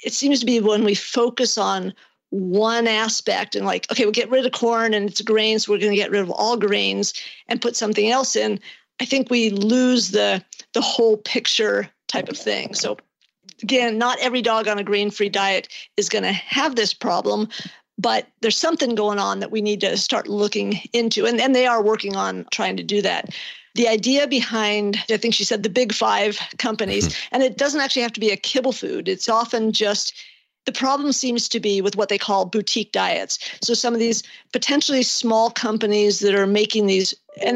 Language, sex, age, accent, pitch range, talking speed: English, female, 50-69, American, 205-245 Hz, 205 wpm